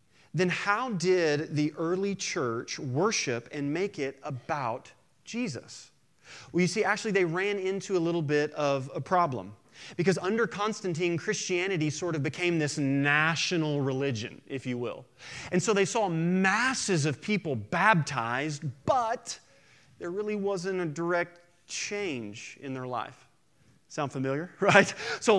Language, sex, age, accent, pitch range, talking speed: English, male, 30-49, American, 145-195 Hz, 140 wpm